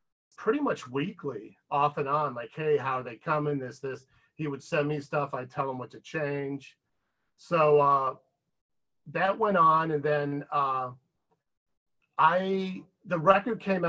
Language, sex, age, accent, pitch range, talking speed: English, male, 40-59, American, 135-155 Hz, 160 wpm